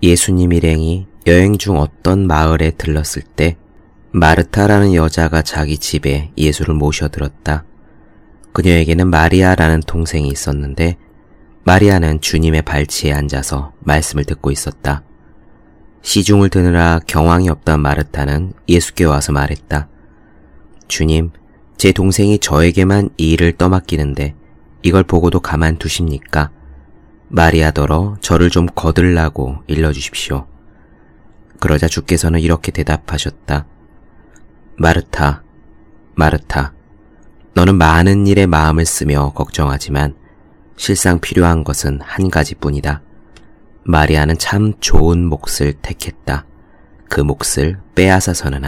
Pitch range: 75-90 Hz